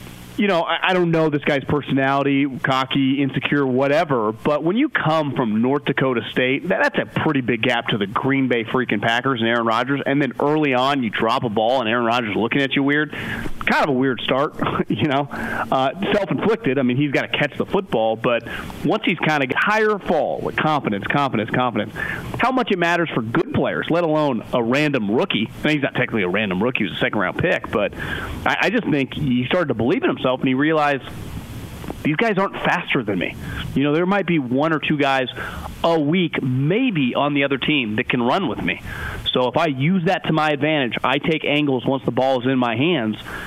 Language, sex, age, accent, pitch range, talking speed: English, male, 30-49, American, 125-165 Hz, 220 wpm